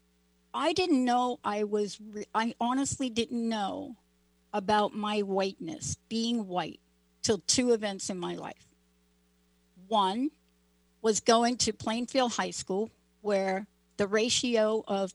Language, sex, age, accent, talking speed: English, female, 60-79, American, 125 wpm